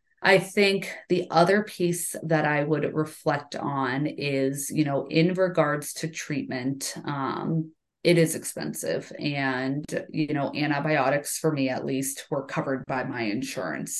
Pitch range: 135-155 Hz